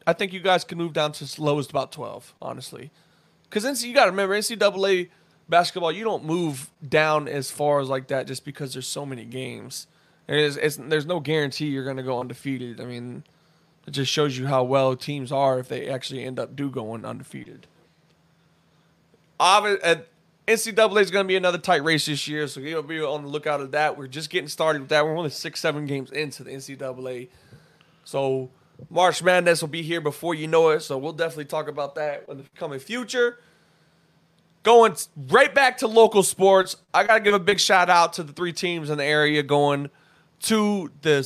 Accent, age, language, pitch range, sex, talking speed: American, 20-39, English, 145-180 Hz, male, 200 wpm